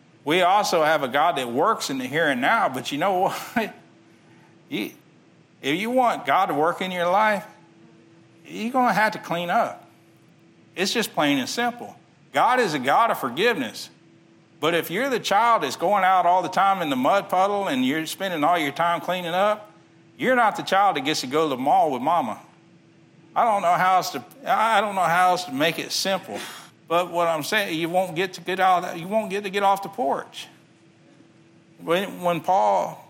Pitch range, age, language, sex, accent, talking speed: 165-200 Hz, 50-69, English, male, American, 210 wpm